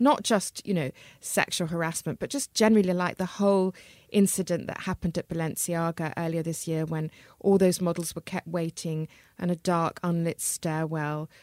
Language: English